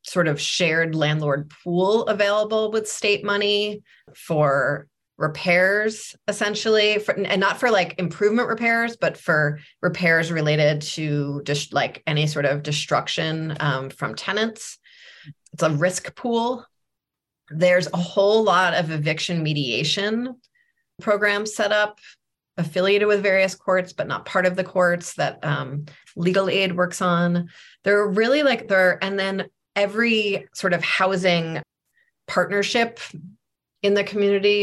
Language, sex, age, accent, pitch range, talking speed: English, female, 30-49, American, 150-205 Hz, 130 wpm